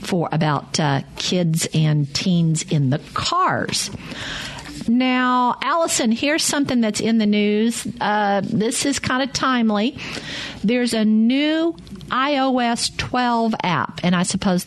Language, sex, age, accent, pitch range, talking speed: English, female, 50-69, American, 185-245 Hz, 130 wpm